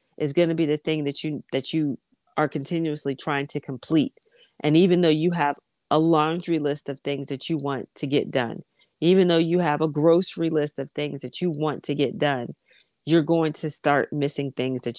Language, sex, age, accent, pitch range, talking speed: English, female, 30-49, American, 140-170 Hz, 210 wpm